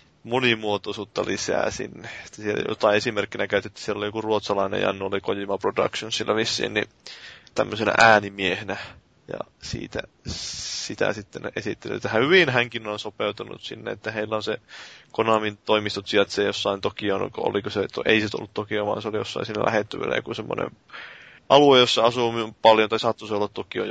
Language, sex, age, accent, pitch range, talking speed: Finnish, male, 20-39, native, 105-115 Hz, 155 wpm